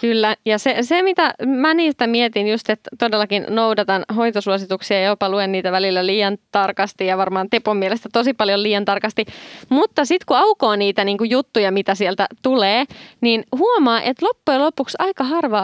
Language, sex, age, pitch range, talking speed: Finnish, female, 20-39, 195-240 Hz, 170 wpm